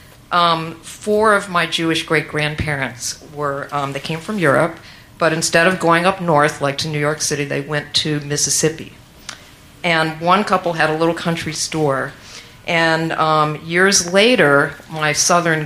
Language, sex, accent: English, female, American